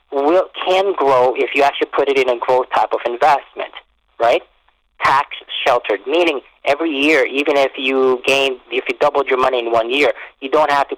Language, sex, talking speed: English, male, 190 wpm